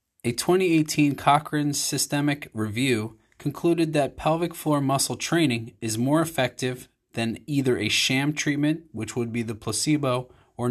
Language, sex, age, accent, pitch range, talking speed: English, male, 20-39, American, 115-145 Hz, 140 wpm